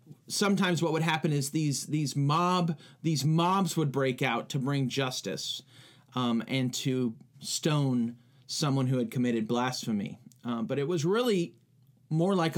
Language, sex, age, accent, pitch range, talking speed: English, male, 30-49, American, 135-185 Hz, 155 wpm